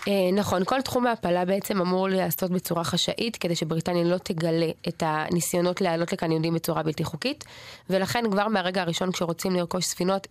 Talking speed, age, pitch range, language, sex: 165 wpm, 20-39, 170-190 Hz, Hebrew, female